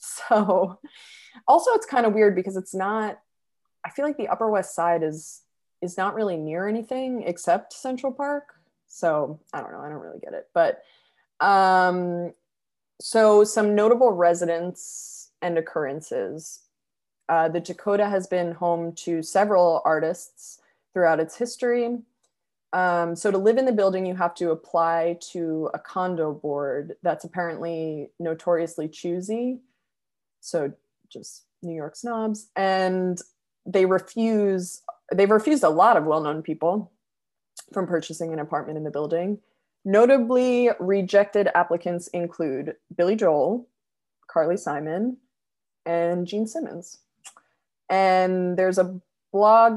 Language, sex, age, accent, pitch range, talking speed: English, female, 20-39, American, 170-220 Hz, 135 wpm